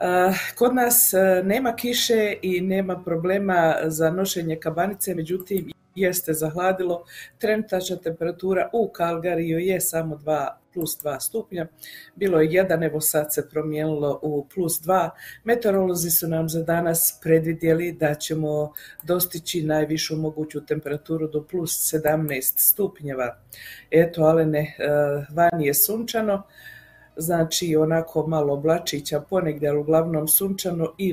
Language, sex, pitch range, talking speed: Croatian, female, 155-185 Hz, 120 wpm